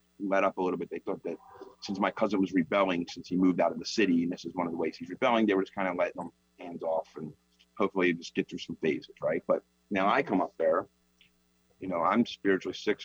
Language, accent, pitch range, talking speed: English, American, 80-115 Hz, 260 wpm